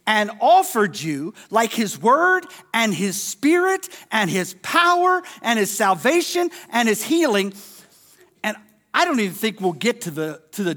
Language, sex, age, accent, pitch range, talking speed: English, male, 50-69, American, 200-320 Hz, 160 wpm